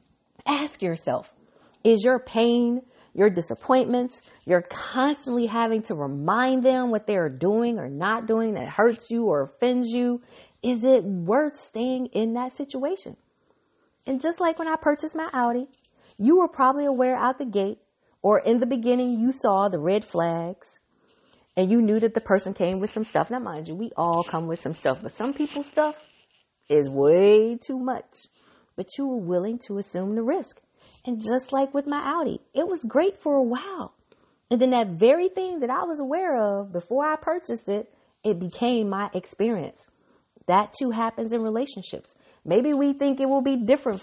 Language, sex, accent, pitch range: English, female, American, 195-260 Hz